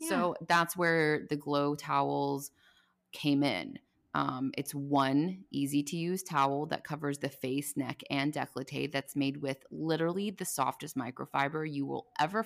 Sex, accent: female, American